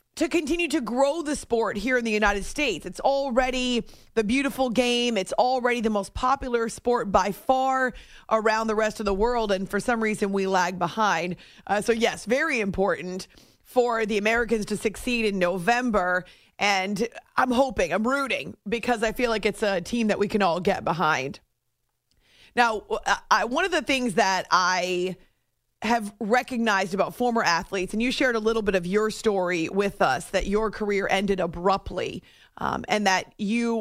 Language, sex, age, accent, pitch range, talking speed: English, female, 30-49, American, 195-240 Hz, 175 wpm